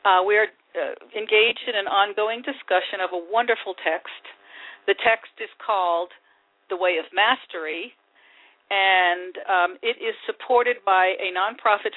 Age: 50-69